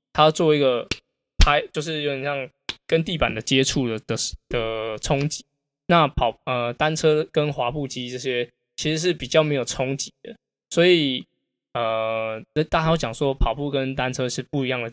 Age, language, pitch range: 20-39, Chinese, 125-150 Hz